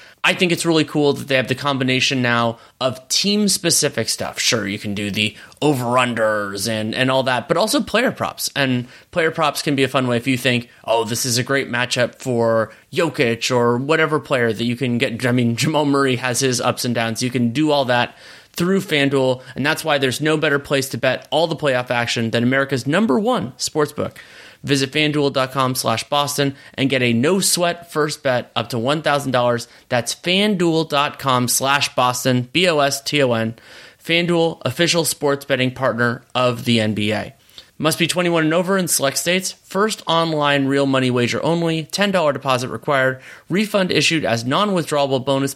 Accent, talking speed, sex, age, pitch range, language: American, 180 wpm, male, 30-49, 120-155 Hz, English